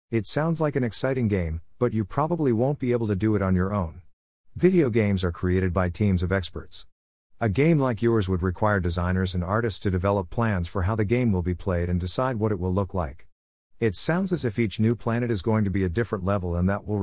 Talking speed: 245 wpm